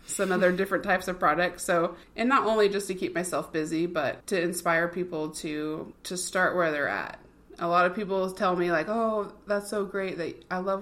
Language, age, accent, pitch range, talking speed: English, 20-39, American, 170-195 Hz, 215 wpm